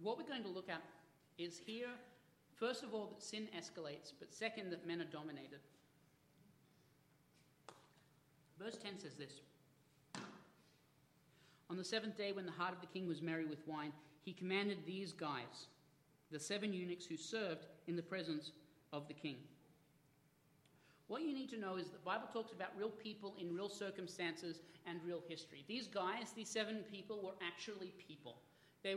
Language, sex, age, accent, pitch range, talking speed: English, male, 40-59, Australian, 155-220 Hz, 165 wpm